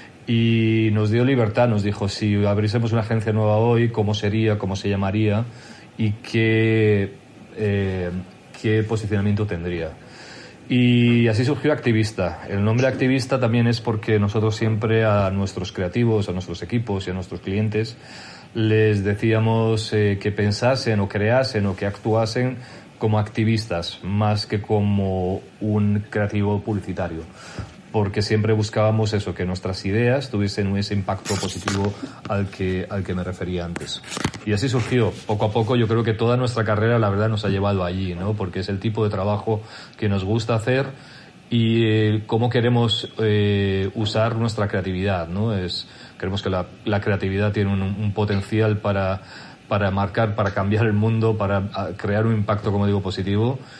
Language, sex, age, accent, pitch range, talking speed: Spanish, male, 40-59, Spanish, 100-115 Hz, 160 wpm